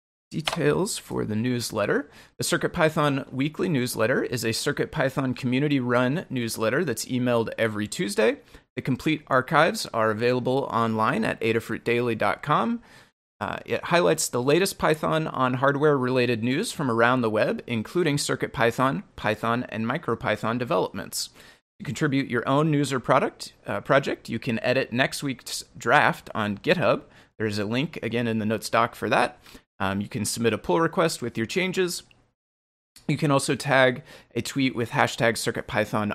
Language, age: English, 30-49